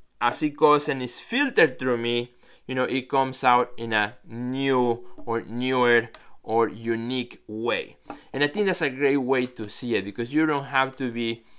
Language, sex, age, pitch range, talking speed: English, male, 20-39, 115-140 Hz, 190 wpm